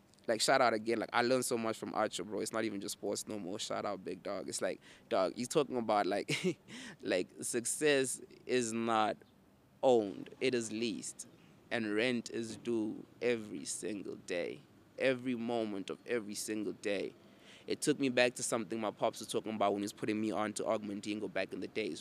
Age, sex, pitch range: 20-39, male, 110-130 Hz